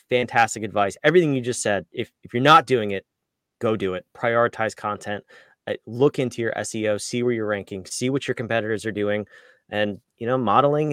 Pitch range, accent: 110-130 Hz, American